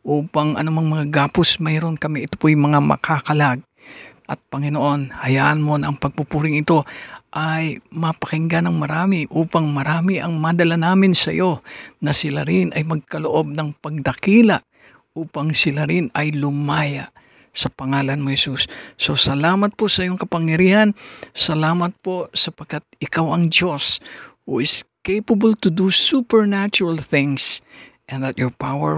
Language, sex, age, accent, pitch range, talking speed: Filipino, male, 50-69, native, 135-165 Hz, 135 wpm